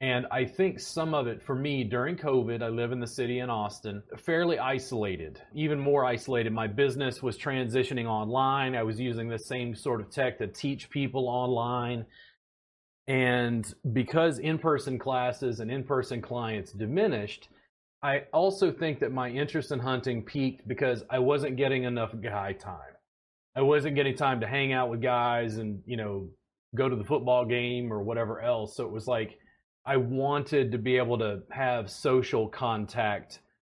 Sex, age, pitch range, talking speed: male, 30-49, 110-135 Hz, 170 wpm